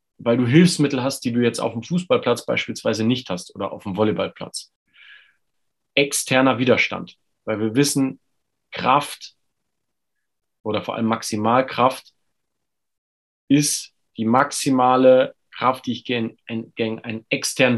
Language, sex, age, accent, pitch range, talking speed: German, male, 40-59, German, 115-145 Hz, 120 wpm